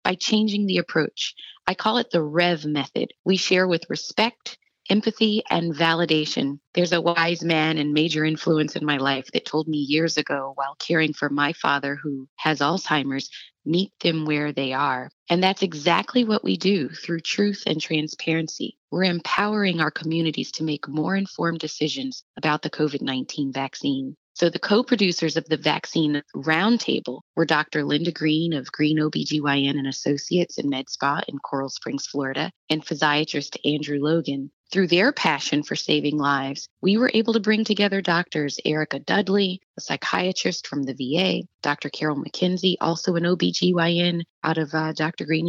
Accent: American